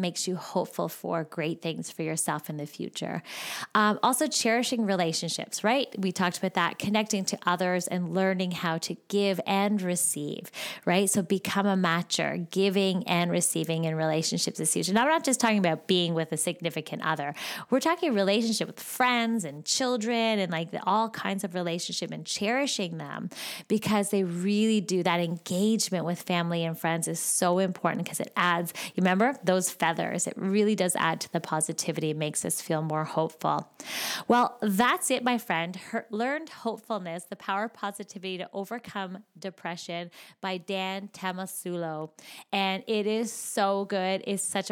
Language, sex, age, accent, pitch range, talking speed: English, female, 20-39, American, 175-220 Hz, 170 wpm